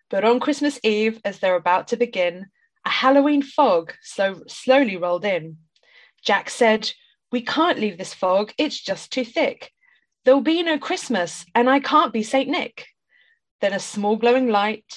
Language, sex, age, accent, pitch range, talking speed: English, female, 20-39, British, 195-275 Hz, 165 wpm